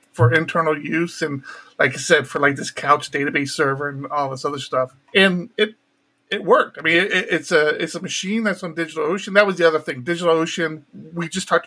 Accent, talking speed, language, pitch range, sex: American, 215 wpm, English, 155-205 Hz, male